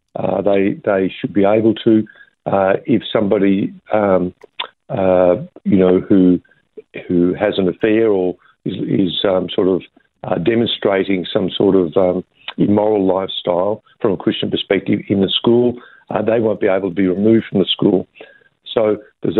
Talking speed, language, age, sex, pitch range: 165 wpm, English, 50-69, male, 95-115 Hz